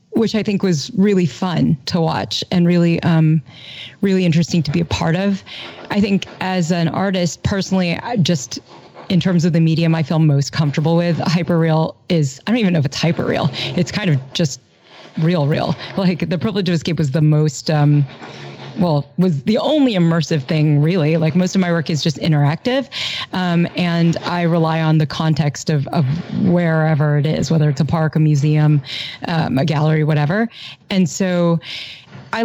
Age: 30-49